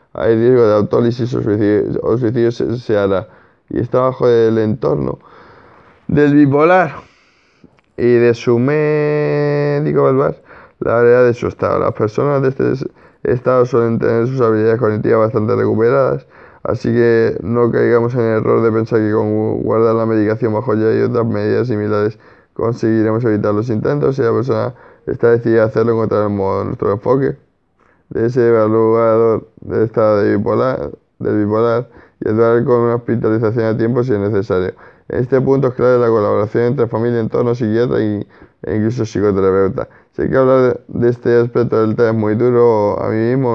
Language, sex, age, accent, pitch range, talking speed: Spanish, male, 20-39, Spanish, 110-120 Hz, 175 wpm